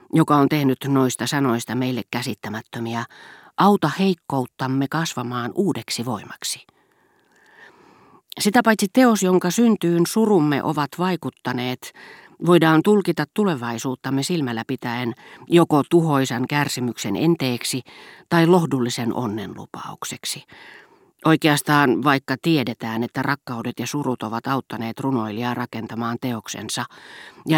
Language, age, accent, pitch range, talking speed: Finnish, 40-59, native, 120-165 Hz, 100 wpm